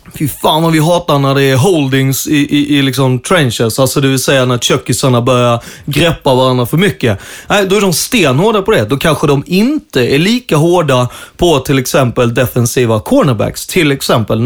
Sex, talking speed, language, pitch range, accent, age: male, 190 wpm, Swedish, 130-160 Hz, native, 30-49